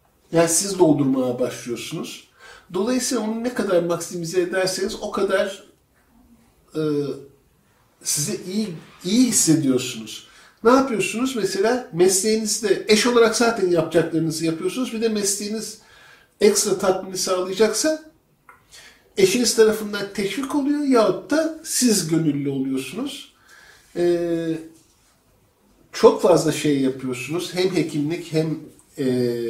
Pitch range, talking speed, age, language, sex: 145-215 Hz, 100 wpm, 50-69, Turkish, male